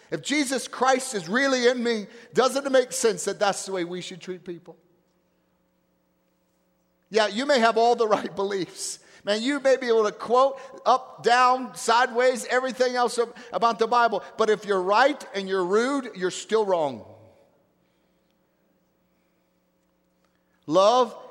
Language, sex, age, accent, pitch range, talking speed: English, male, 50-69, American, 170-235 Hz, 150 wpm